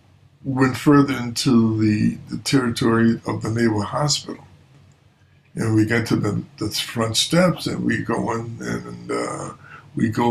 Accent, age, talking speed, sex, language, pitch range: American, 60-79, 150 wpm, male, English, 110-140 Hz